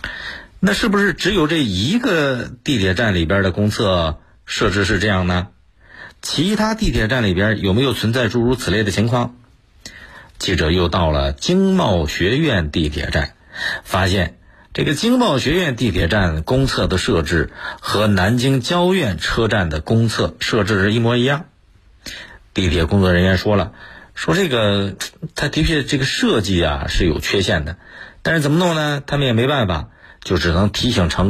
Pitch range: 90-130 Hz